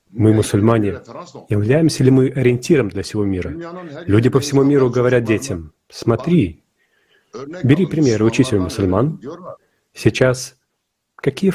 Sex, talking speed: male, 120 wpm